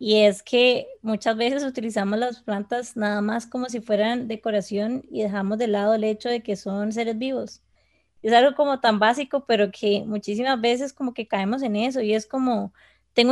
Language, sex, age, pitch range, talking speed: Spanish, female, 20-39, 215-255 Hz, 195 wpm